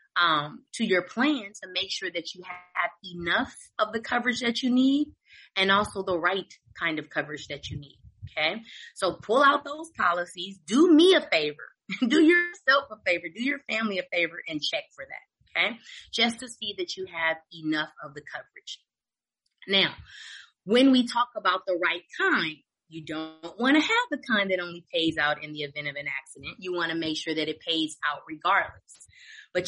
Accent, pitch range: American, 170-265 Hz